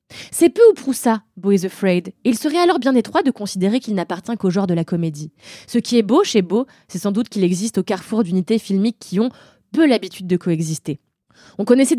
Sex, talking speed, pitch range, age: female, 225 wpm, 185-260 Hz, 20-39